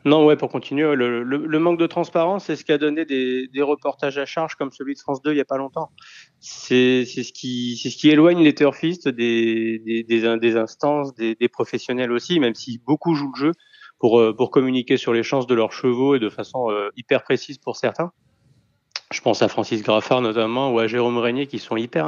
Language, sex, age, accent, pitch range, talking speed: French, male, 30-49, French, 115-145 Hz, 230 wpm